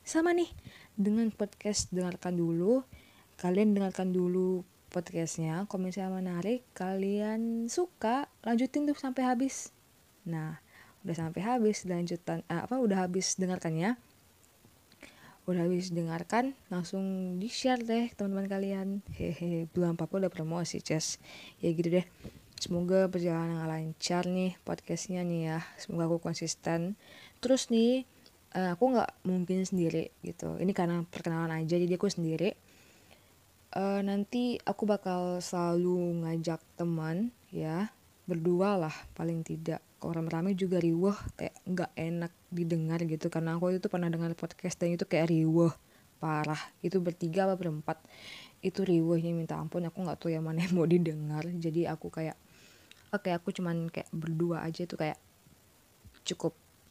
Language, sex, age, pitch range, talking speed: Indonesian, female, 20-39, 165-195 Hz, 140 wpm